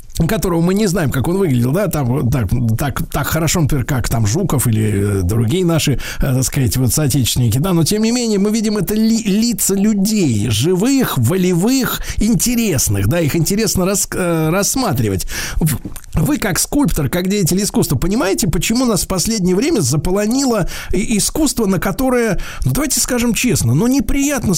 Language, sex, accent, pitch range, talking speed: Russian, male, native, 135-210 Hz, 165 wpm